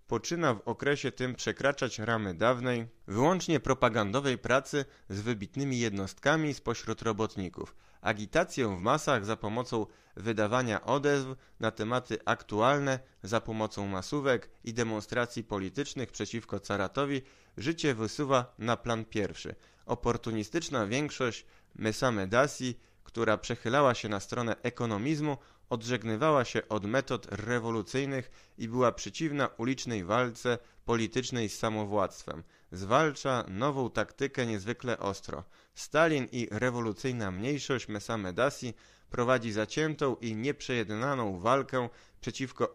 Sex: male